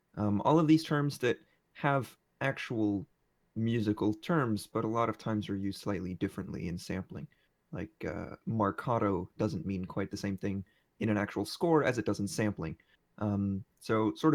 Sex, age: male, 20-39